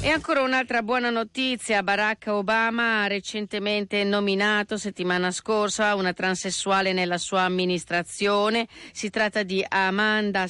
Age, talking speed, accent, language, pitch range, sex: 40-59, 120 wpm, native, Italian, 185-225 Hz, female